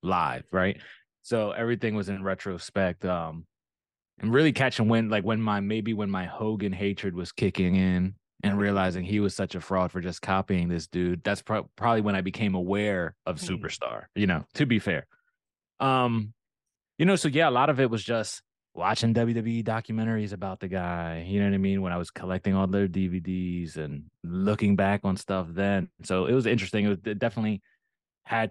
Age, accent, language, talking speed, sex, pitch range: 20-39, American, English, 195 wpm, male, 95-115 Hz